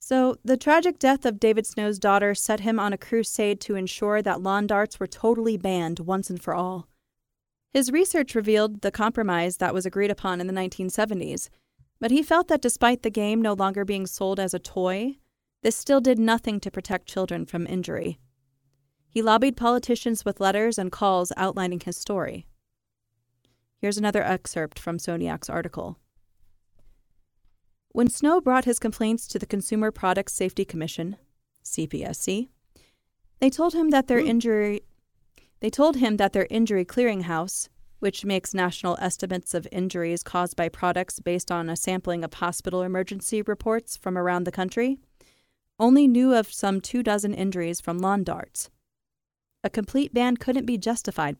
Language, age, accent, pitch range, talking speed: English, 30-49, American, 175-225 Hz, 160 wpm